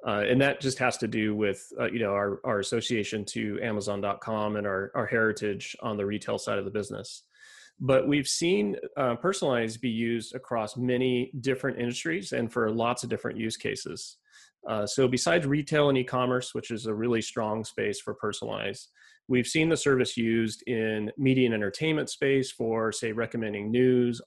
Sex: male